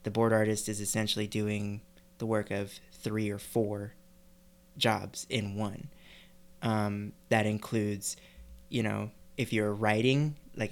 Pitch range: 105-115 Hz